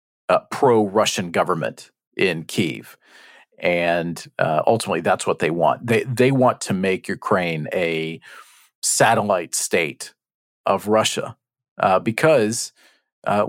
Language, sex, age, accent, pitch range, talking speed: English, male, 40-59, American, 110-130 Hz, 115 wpm